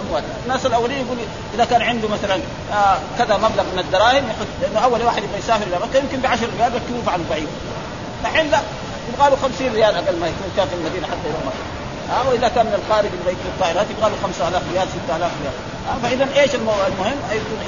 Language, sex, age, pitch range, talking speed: Arabic, male, 40-59, 195-255 Hz, 205 wpm